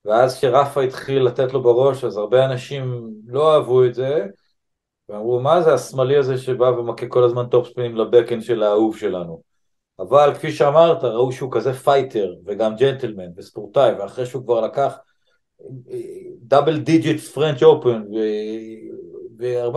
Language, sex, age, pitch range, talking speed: Hebrew, male, 50-69, 120-160 Hz, 145 wpm